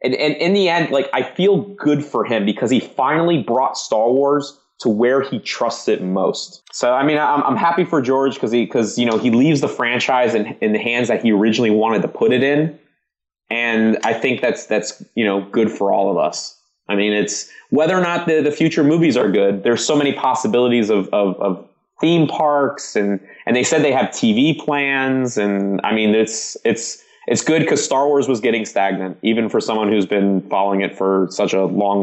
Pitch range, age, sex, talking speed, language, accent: 105-145 Hz, 20-39, male, 220 wpm, English, American